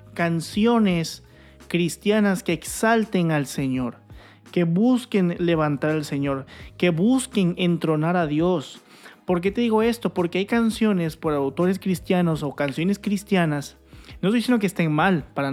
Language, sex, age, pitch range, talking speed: Spanish, male, 30-49, 145-190 Hz, 145 wpm